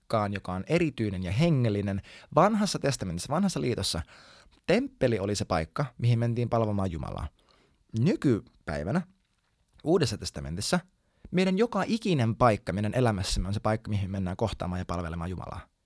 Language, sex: Finnish, male